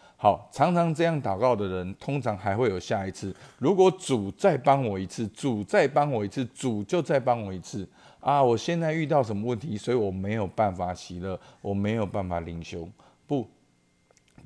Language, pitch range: Chinese, 100-135 Hz